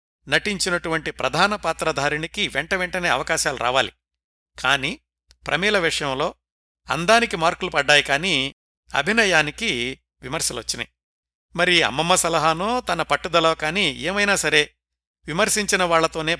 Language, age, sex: Telugu, 60-79, male